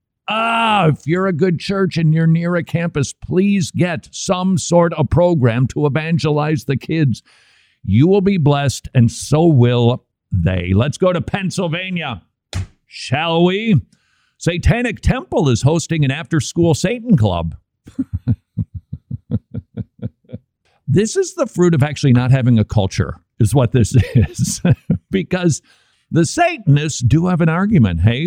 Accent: American